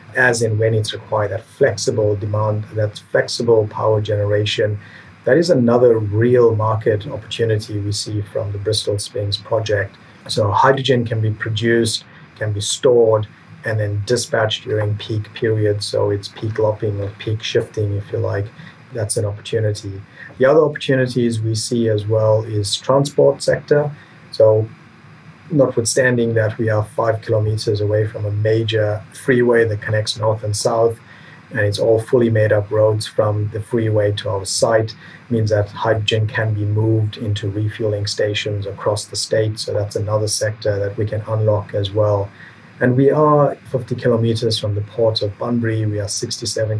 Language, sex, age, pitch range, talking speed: English, male, 30-49, 105-115 Hz, 165 wpm